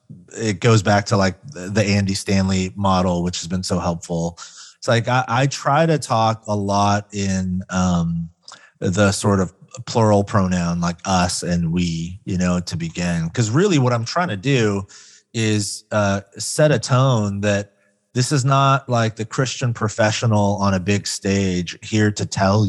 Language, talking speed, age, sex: English, 170 wpm, 30-49, male